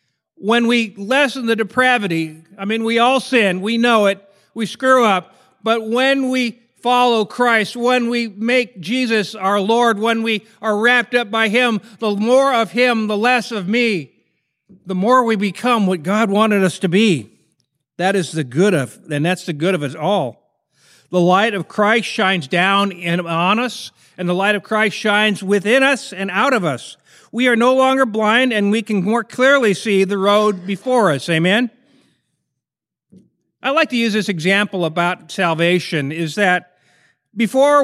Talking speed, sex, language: 175 wpm, male, English